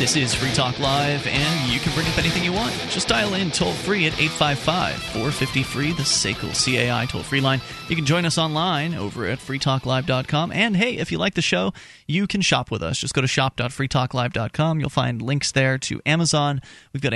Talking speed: 200 wpm